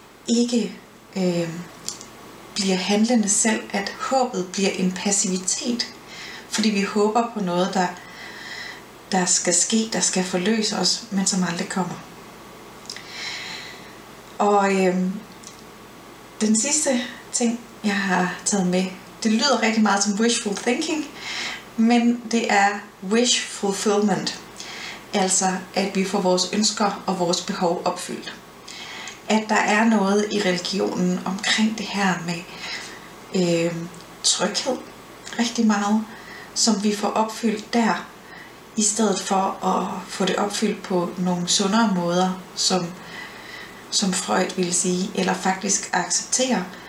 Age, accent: 30-49, native